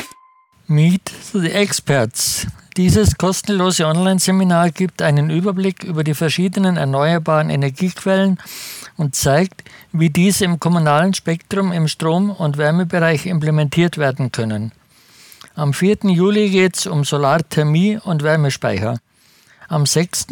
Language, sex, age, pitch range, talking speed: German, male, 60-79, 155-190 Hz, 115 wpm